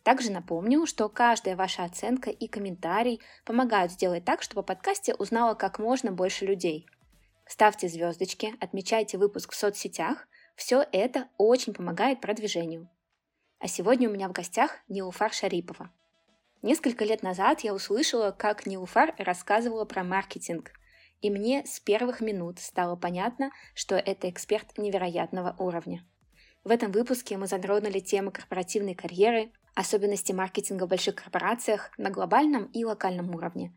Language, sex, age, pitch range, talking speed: Russian, female, 20-39, 190-230 Hz, 140 wpm